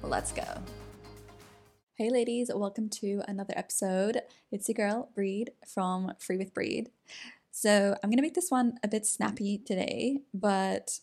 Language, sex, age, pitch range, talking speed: English, female, 10-29, 185-225 Hz, 145 wpm